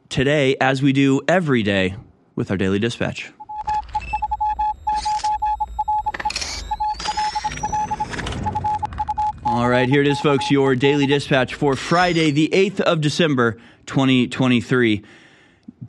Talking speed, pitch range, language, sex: 100 wpm, 120-155 Hz, English, male